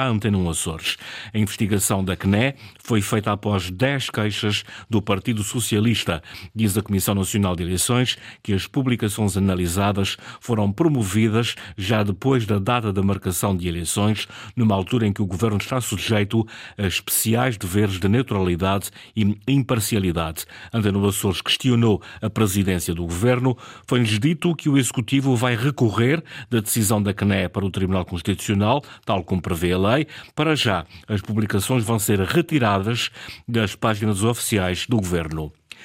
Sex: male